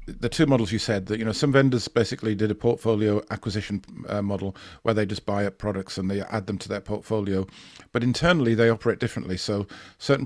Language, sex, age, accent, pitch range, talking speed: English, male, 50-69, British, 100-115 Hz, 215 wpm